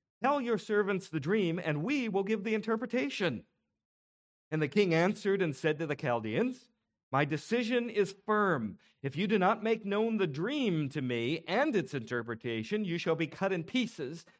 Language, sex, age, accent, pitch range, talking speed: English, male, 50-69, American, 150-215 Hz, 180 wpm